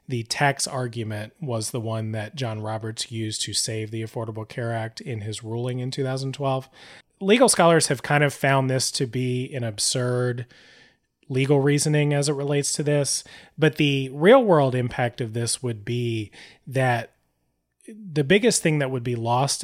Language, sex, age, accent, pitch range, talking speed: English, male, 30-49, American, 120-145 Hz, 170 wpm